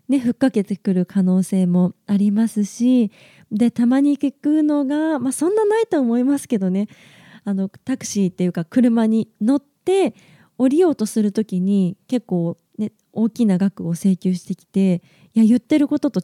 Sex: female